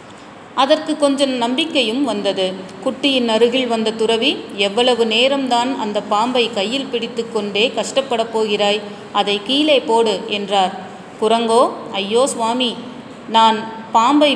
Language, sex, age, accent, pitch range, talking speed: Tamil, female, 30-49, native, 210-250 Hz, 100 wpm